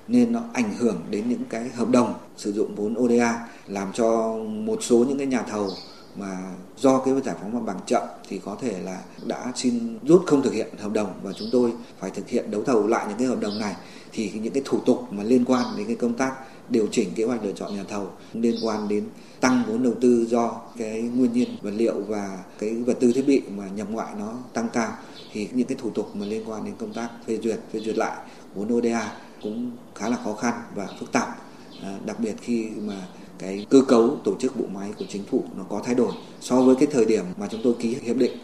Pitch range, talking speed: 115-135 Hz, 245 wpm